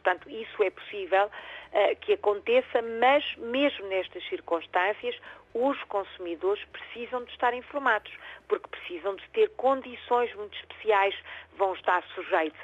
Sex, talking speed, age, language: female, 125 wpm, 40-59, Portuguese